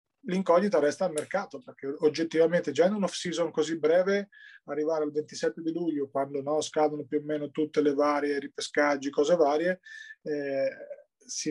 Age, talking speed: 30-49, 155 wpm